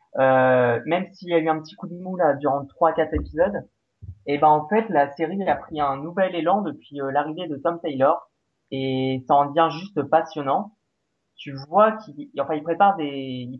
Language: French